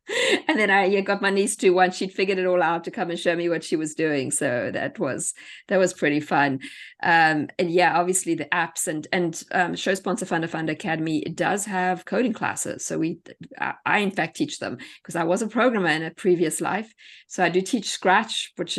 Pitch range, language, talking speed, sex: 170-205 Hz, English, 225 wpm, female